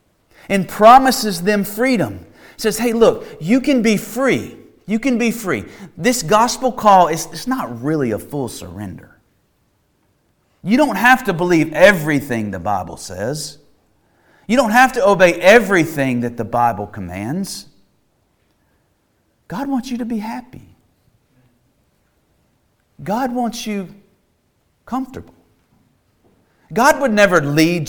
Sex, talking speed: male, 125 wpm